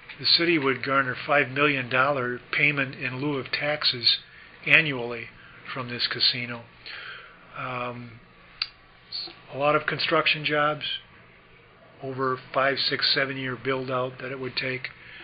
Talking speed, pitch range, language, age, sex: 125 wpm, 125-140 Hz, English, 40-59, male